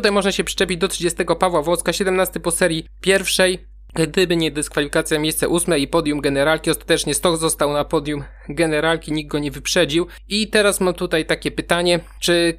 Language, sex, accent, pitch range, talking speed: Polish, male, native, 165-190 Hz, 175 wpm